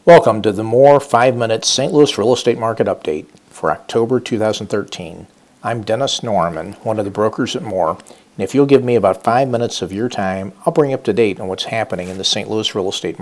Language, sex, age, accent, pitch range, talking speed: English, male, 50-69, American, 100-120 Hz, 225 wpm